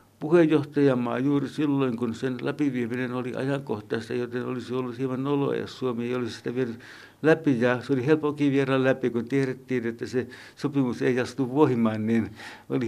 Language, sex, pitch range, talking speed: Finnish, male, 125-150 Hz, 170 wpm